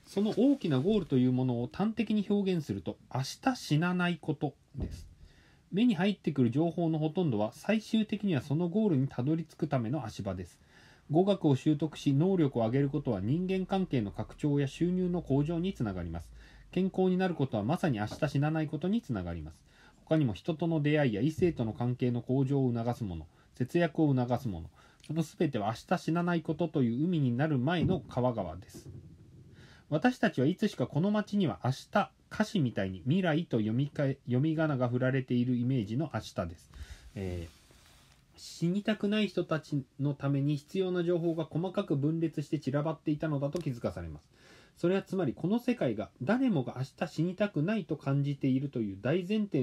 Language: Japanese